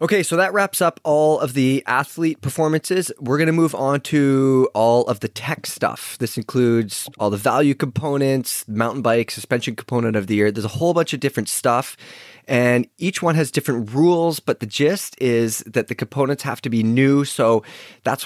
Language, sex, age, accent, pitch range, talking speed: English, male, 20-39, American, 115-150 Hz, 195 wpm